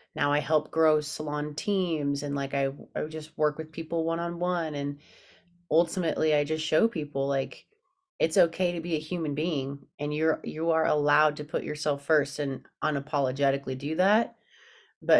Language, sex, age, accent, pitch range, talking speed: English, female, 30-49, American, 140-165 Hz, 180 wpm